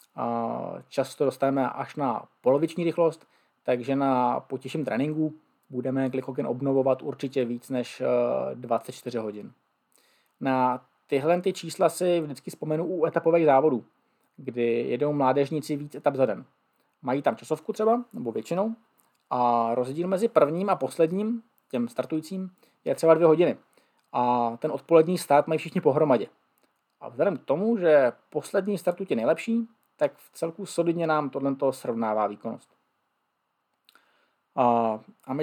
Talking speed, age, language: 135 wpm, 20-39, Czech